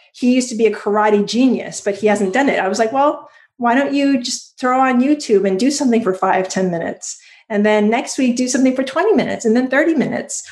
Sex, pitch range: female, 195-255 Hz